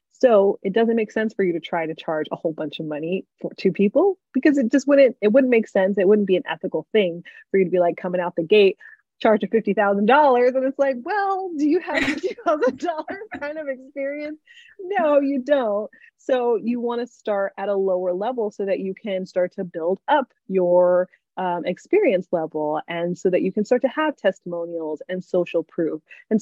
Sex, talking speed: female, 210 wpm